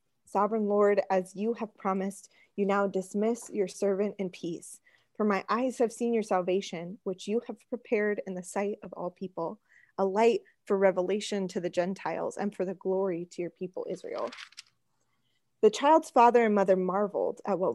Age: 20-39